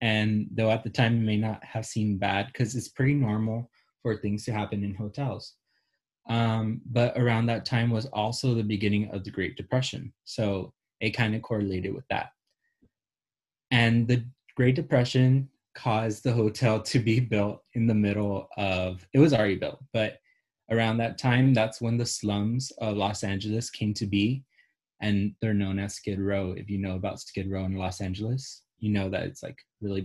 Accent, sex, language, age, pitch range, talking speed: American, male, English, 20-39, 105-125 Hz, 190 wpm